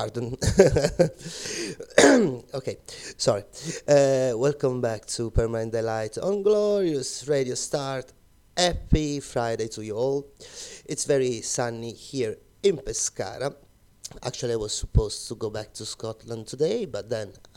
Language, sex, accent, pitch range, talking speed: Italian, male, native, 110-140 Hz, 125 wpm